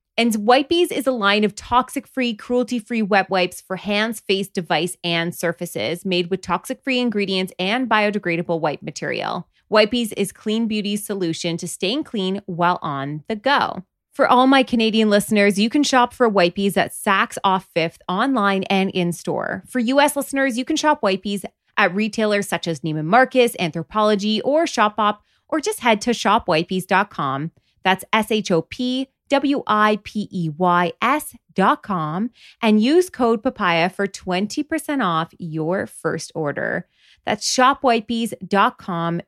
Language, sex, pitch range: English, female, 175-235 Hz